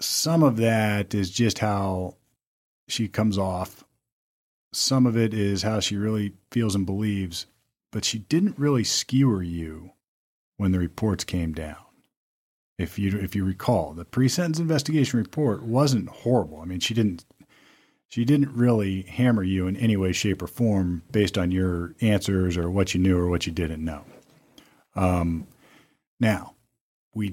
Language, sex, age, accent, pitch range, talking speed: English, male, 40-59, American, 90-115 Hz, 160 wpm